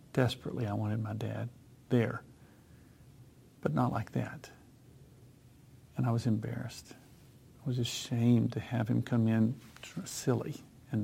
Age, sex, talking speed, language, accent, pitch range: 50-69, male, 130 wpm, English, American, 120-130 Hz